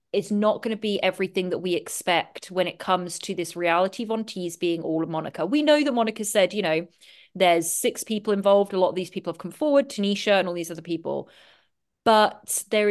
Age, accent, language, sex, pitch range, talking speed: 30-49, British, English, female, 170-205 Hz, 225 wpm